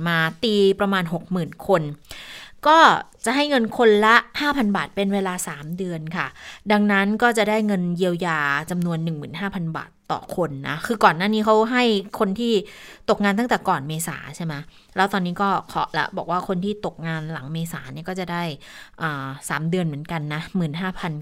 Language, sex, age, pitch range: Thai, female, 20-39, 160-200 Hz